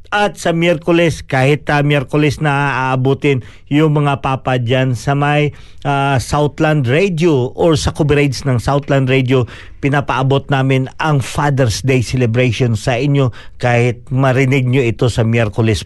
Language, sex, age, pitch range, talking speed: Filipino, male, 50-69, 115-150 Hz, 145 wpm